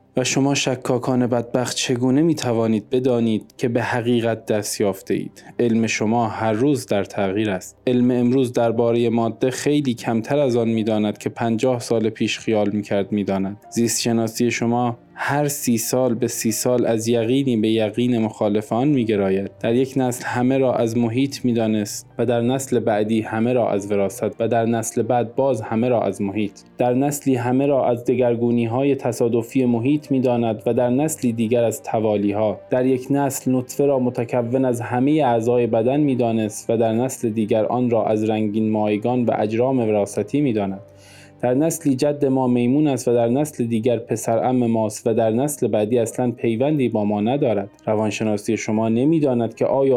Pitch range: 110-130 Hz